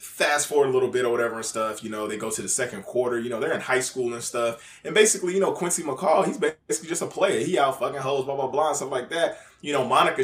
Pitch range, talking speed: 125-190 Hz, 295 wpm